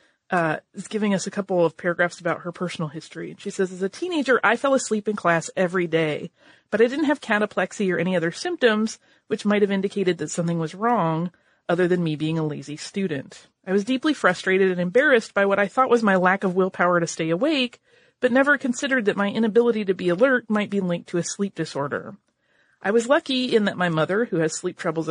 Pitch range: 170-225 Hz